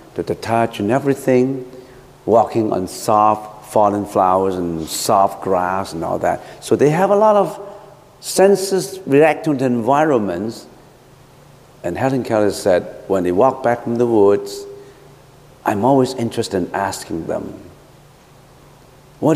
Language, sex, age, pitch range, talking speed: English, male, 60-79, 120-155 Hz, 135 wpm